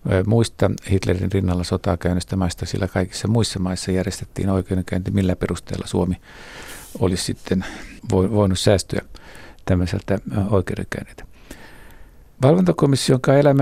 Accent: native